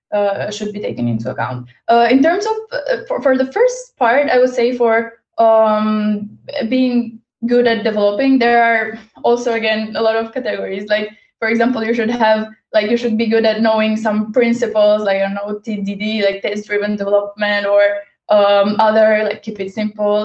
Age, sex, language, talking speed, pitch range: 10-29, female, English, 190 wpm, 210-240 Hz